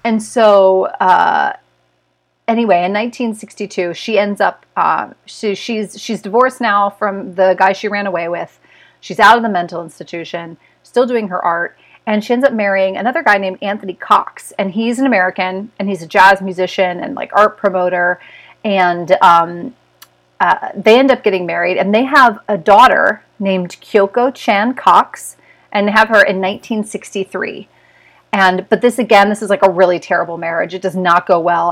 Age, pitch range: 40-59, 180-215 Hz